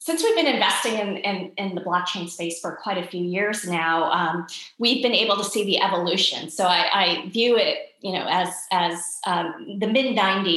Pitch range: 180-215 Hz